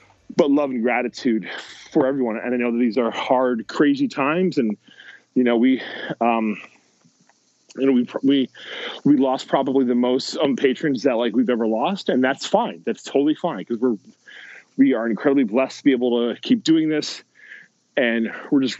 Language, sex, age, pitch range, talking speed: English, male, 30-49, 120-155 Hz, 185 wpm